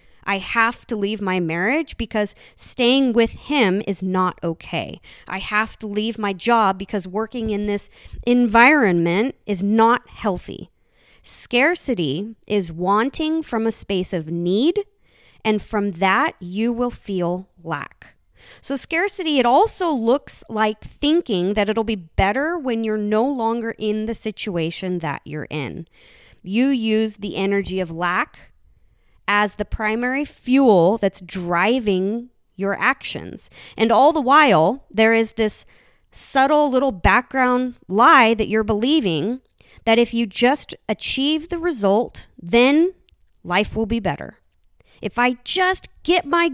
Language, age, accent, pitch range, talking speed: English, 20-39, American, 195-270 Hz, 140 wpm